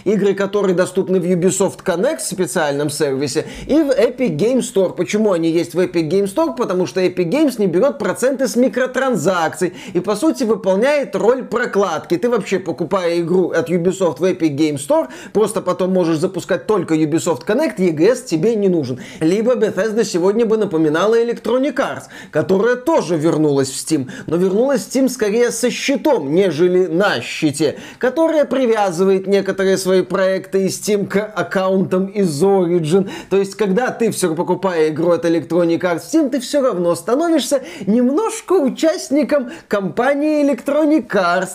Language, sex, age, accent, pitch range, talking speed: Russian, male, 20-39, native, 180-250 Hz, 160 wpm